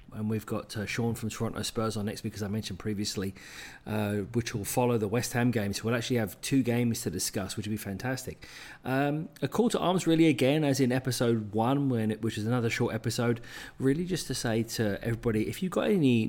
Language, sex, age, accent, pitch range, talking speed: English, male, 40-59, British, 105-130 Hz, 230 wpm